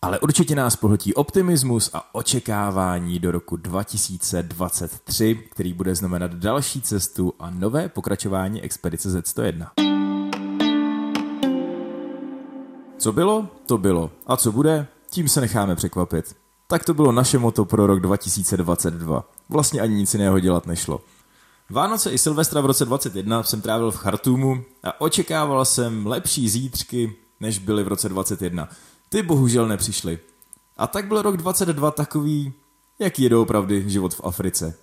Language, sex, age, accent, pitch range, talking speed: Czech, male, 20-39, native, 95-135 Hz, 140 wpm